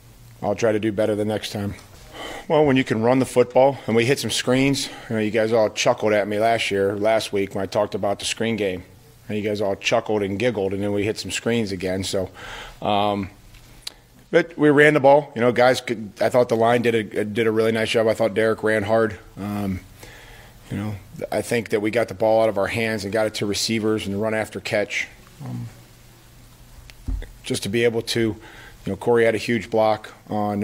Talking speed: 230 wpm